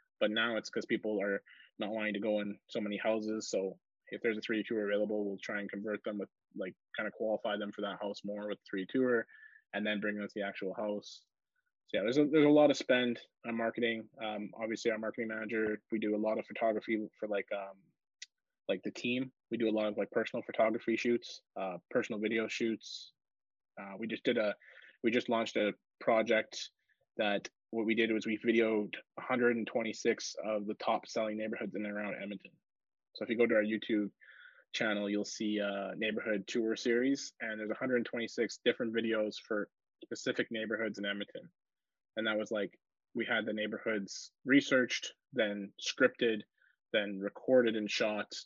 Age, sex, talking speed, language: 20-39, male, 195 wpm, English